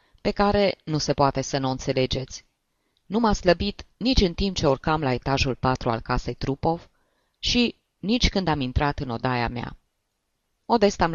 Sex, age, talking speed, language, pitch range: female, 20-39, 165 wpm, Romanian, 120-155 Hz